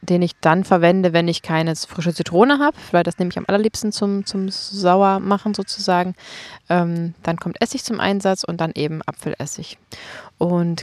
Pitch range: 165-190 Hz